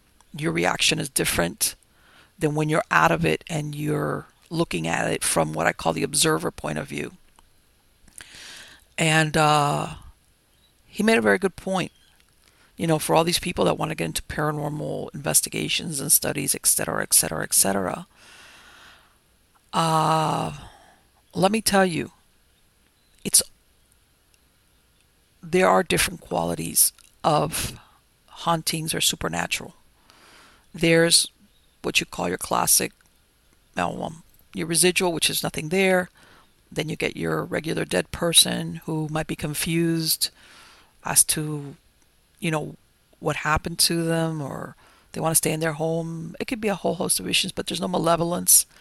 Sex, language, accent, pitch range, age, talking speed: female, English, American, 150-170 Hz, 50-69, 145 wpm